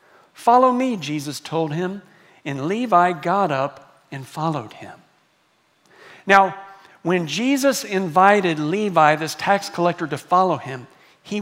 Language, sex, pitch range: English, male, 165-210 Hz